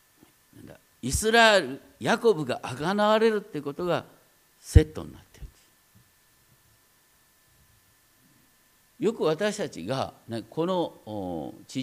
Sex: male